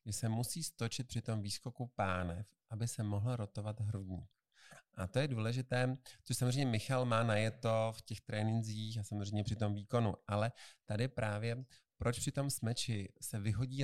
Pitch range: 105-130 Hz